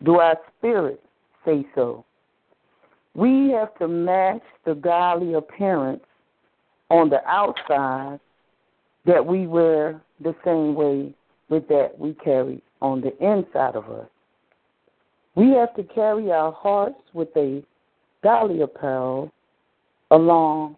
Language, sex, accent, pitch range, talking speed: English, female, American, 155-205 Hz, 120 wpm